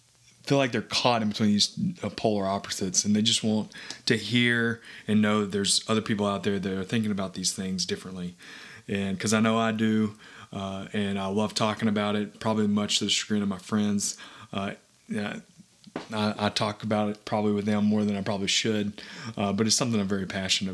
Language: English